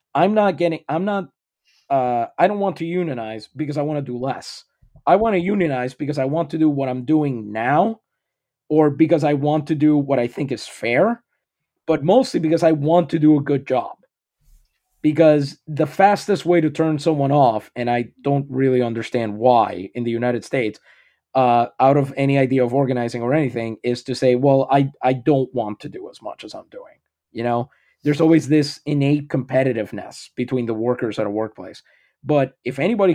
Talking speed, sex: 195 wpm, male